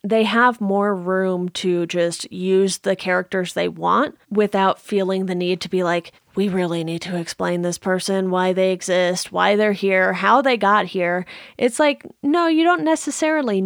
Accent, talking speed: American, 180 wpm